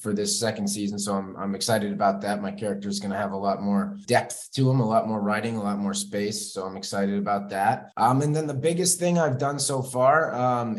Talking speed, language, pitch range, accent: 255 wpm, English, 105-140 Hz, American